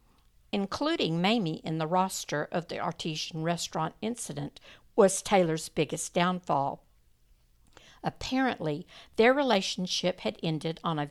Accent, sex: American, female